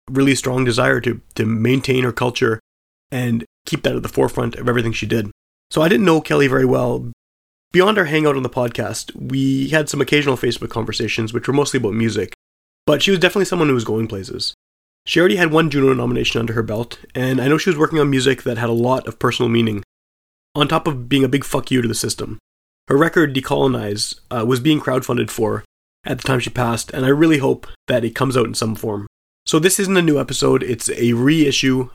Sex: male